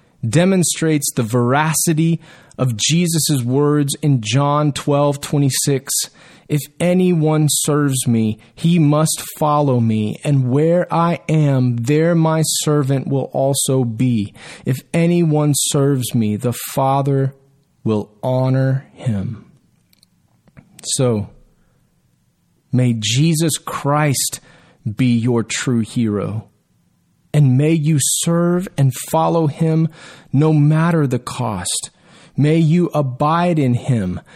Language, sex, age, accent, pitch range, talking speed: English, male, 30-49, American, 130-160 Hz, 110 wpm